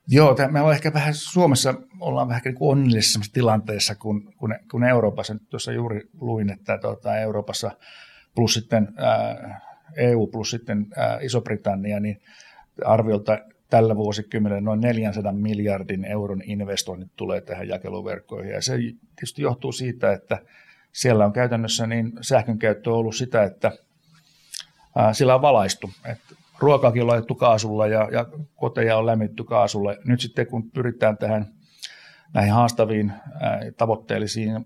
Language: English